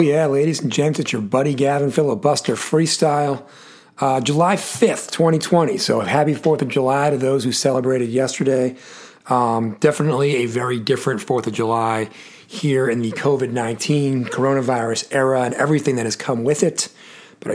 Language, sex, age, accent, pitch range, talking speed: English, male, 40-59, American, 125-150 Hz, 160 wpm